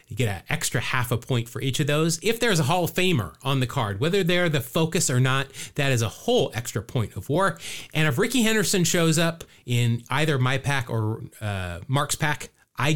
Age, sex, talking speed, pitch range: 30-49, male, 225 wpm, 115-155 Hz